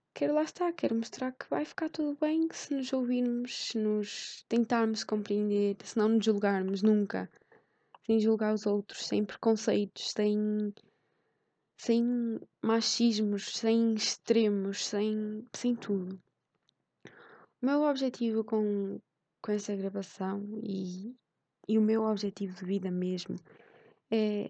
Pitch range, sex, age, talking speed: 210-250 Hz, female, 20-39, 125 wpm